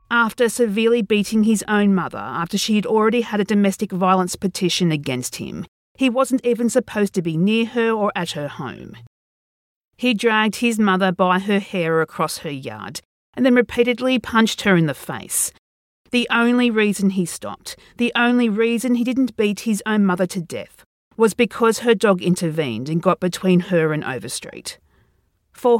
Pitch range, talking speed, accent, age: 170-225 Hz, 175 wpm, Australian, 40-59